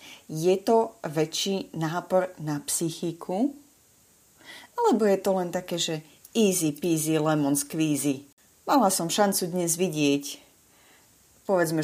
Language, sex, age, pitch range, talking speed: English, female, 30-49, 155-190 Hz, 110 wpm